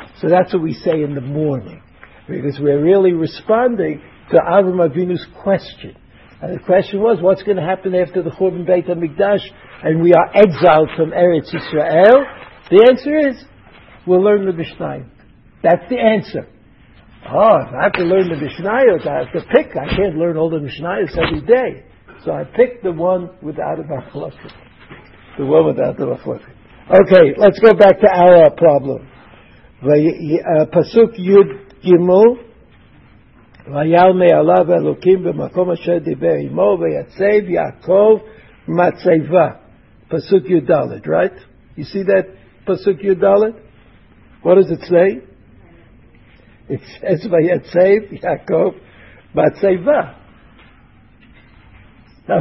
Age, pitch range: 60-79, 155-200 Hz